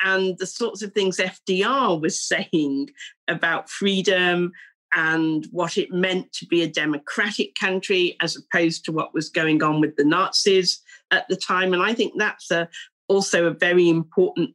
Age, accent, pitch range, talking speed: 50-69, British, 170-215 Hz, 165 wpm